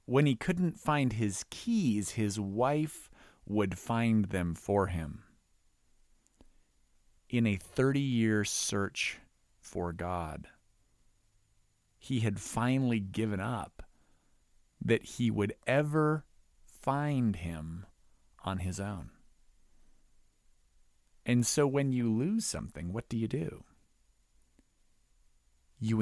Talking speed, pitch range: 105 wpm, 80-120 Hz